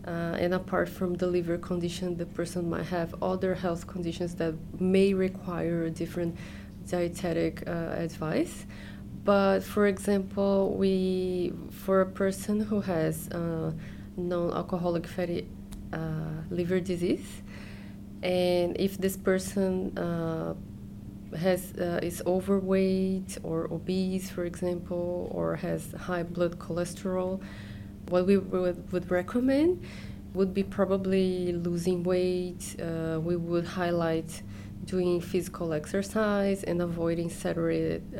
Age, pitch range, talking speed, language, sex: 20-39, 165-185 Hz, 115 wpm, English, female